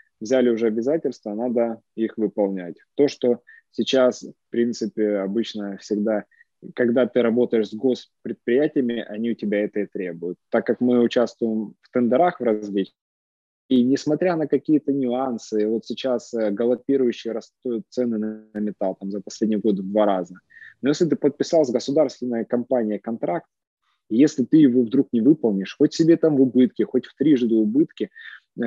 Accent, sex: native, male